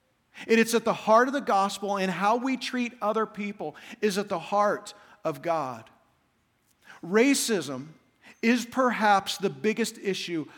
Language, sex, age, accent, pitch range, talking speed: English, male, 50-69, American, 190-235 Hz, 145 wpm